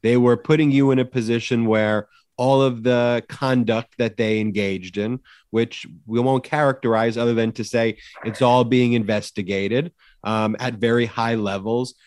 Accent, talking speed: American, 165 wpm